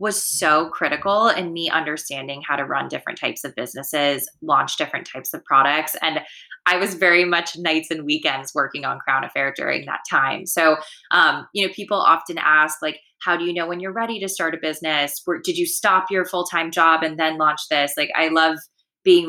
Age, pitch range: 20-39, 150-185 Hz